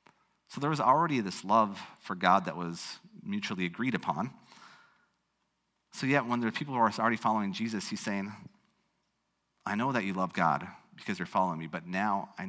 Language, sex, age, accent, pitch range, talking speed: English, male, 40-59, American, 95-130 Hz, 185 wpm